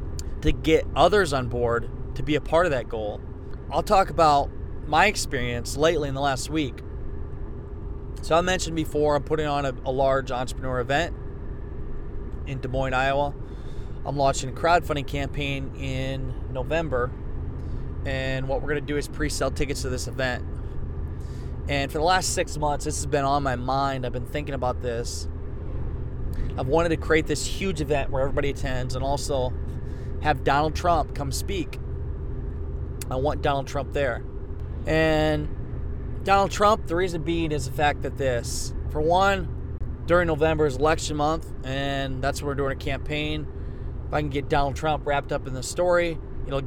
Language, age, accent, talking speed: English, 20-39, American, 170 wpm